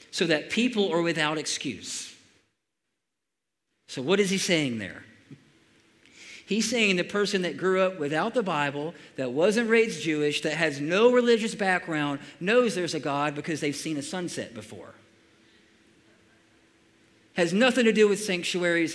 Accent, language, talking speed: American, English, 150 wpm